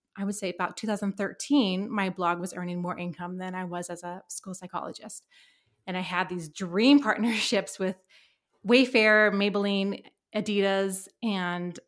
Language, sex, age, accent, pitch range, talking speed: English, female, 30-49, American, 185-230 Hz, 145 wpm